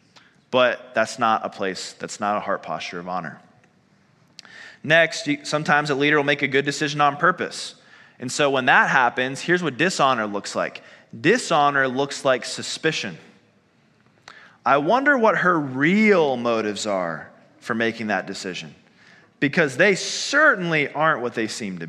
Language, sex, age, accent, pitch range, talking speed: English, male, 20-39, American, 120-155 Hz, 155 wpm